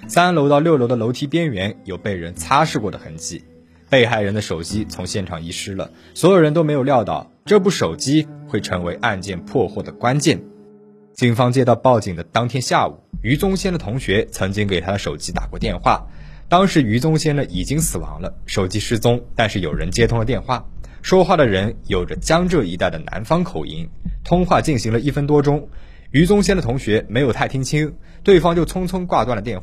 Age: 20-39